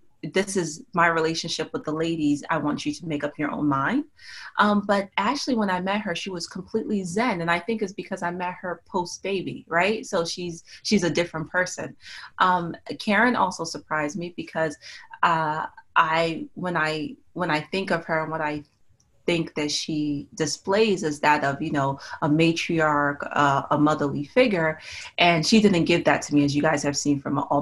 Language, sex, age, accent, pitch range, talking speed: English, female, 30-49, American, 150-185 Hz, 200 wpm